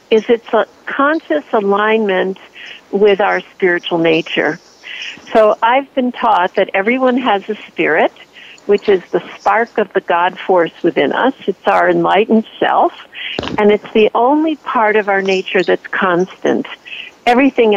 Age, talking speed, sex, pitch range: 50-69, 145 wpm, female, 190-240 Hz